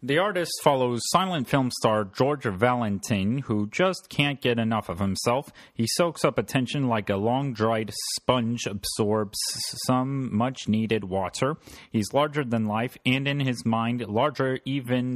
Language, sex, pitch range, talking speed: English, male, 105-130 Hz, 145 wpm